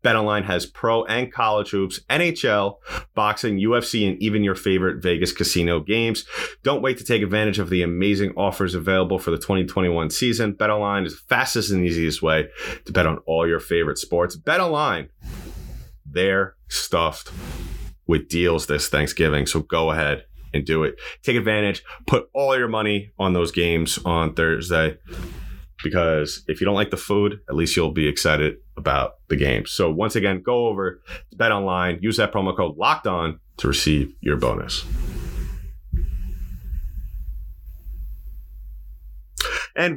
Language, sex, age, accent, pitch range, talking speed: English, male, 30-49, American, 80-105 Hz, 155 wpm